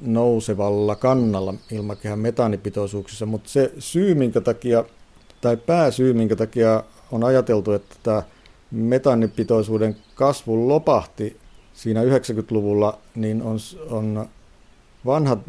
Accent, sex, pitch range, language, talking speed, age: native, male, 105-125 Hz, Finnish, 100 wpm, 50-69